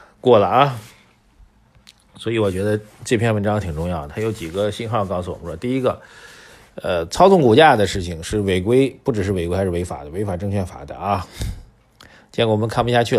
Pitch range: 95-110 Hz